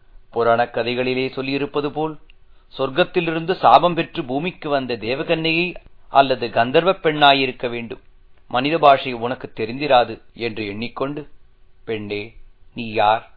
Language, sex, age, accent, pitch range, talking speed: Tamil, male, 40-59, native, 120-150 Hz, 100 wpm